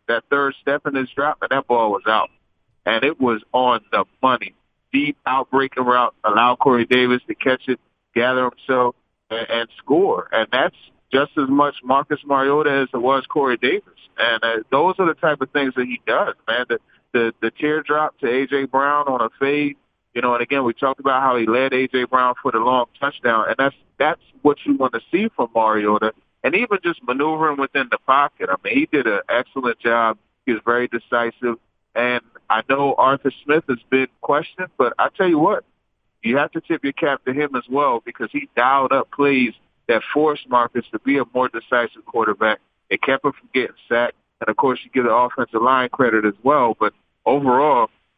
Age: 40-59